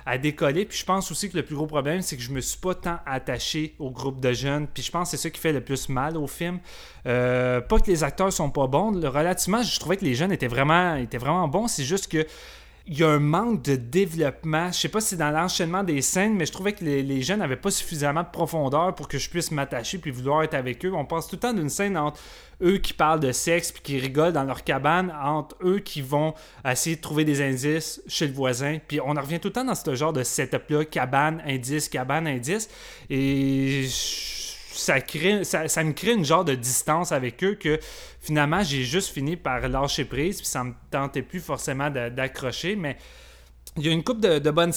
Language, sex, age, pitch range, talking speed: French, male, 30-49, 135-175 Hz, 245 wpm